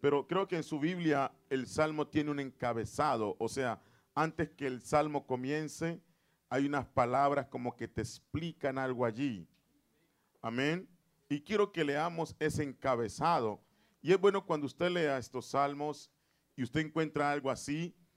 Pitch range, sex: 135-170 Hz, male